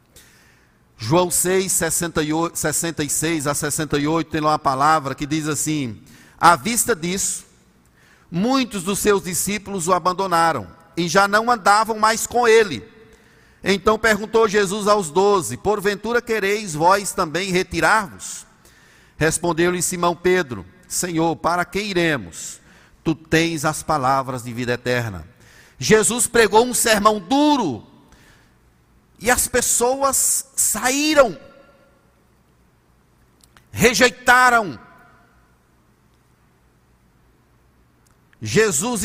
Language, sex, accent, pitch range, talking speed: Portuguese, male, Brazilian, 155-230 Hz, 95 wpm